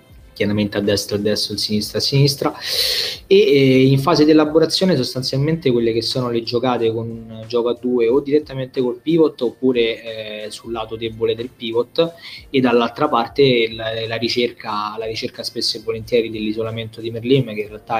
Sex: male